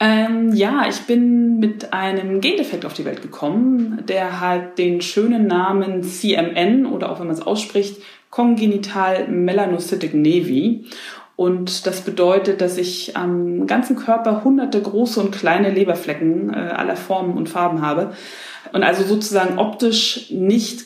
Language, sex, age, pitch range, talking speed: German, female, 30-49, 180-225 Hz, 140 wpm